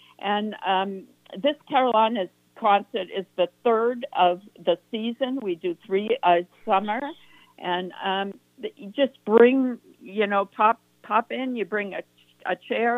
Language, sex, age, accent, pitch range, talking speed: English, female, 60-79, American, 180-230 Hz, 150 wpm